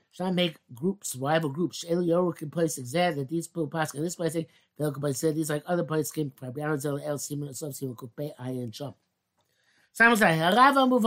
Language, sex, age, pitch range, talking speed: English, male, 60-79, 135-190 Hz, 155 wpm